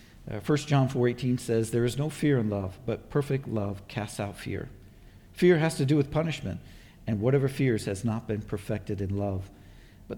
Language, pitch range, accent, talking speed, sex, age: English, 110-145 Hz, American, 190 wpm, male, 50-69